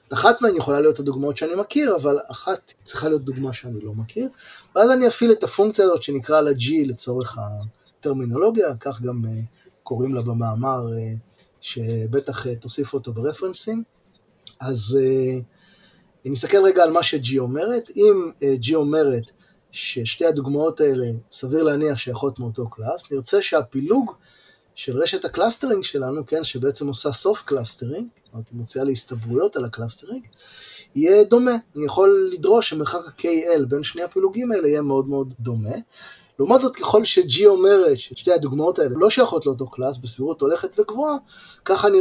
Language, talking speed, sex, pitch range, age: Hebrew, 155 wpm, male, 130-210 Hz, 20-39